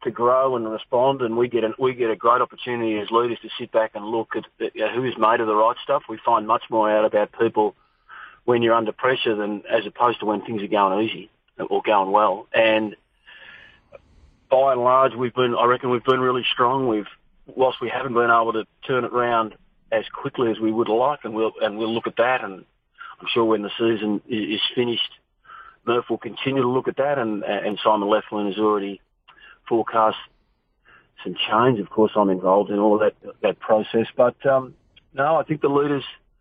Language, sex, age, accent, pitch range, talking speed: English, male, 40-59, Australian, 110-120 Hz, 210 wpm